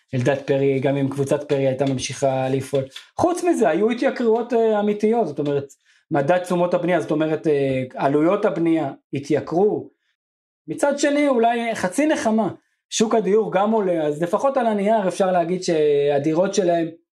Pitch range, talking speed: 145-185 Hz, 145 wpm